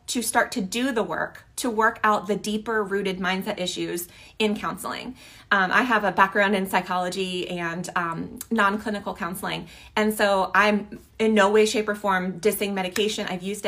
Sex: female